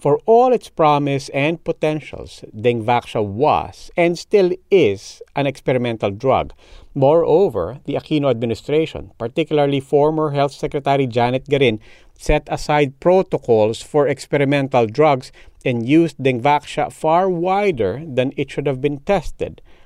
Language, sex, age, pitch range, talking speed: English, male, 50-69, 125-160 Hz, 125 wpm